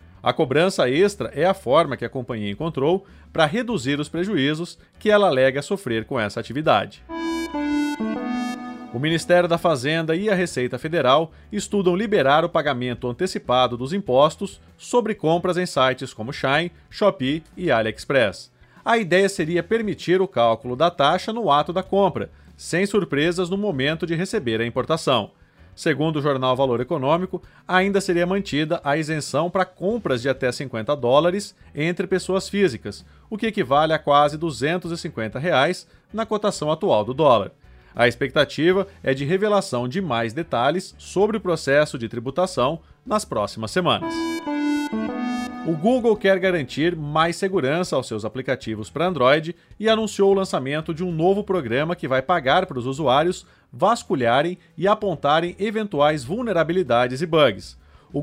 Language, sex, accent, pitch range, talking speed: Portuguese, male, Brazilian, 135-195 Hz, 150 wpm